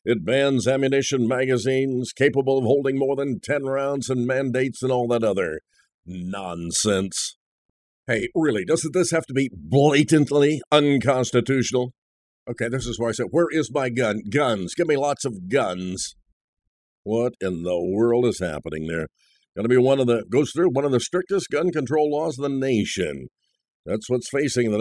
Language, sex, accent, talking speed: English, male, American, 170 wpm